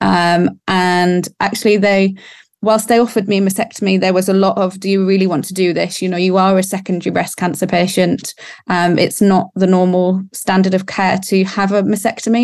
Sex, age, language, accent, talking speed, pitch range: female, 20-39, English, British, 205 wpm, 175-200 Hz